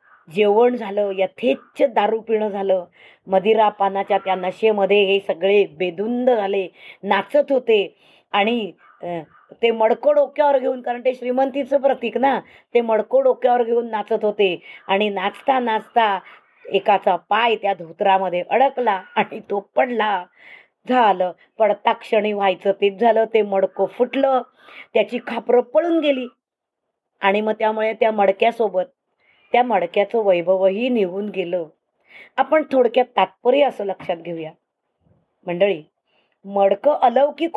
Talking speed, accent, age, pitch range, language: 120 wpm, native, 20-39, 195-250 Hz, Marathi